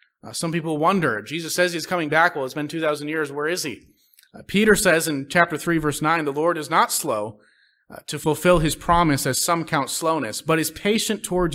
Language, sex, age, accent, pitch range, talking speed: English, male, 30-49, American, 140-175 Hz, 225 wpm